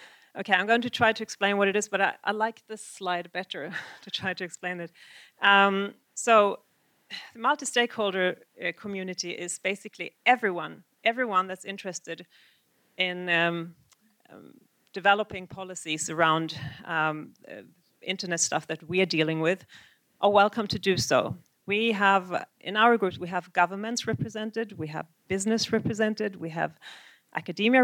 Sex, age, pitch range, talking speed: female, 40-59, 175-210 Hz, 150 wpm